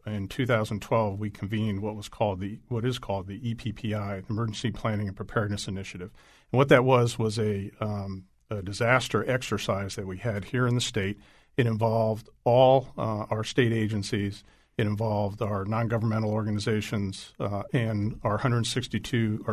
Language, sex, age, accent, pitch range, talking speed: English, male, 50-69, American, 105-115 Hz, 155 wpm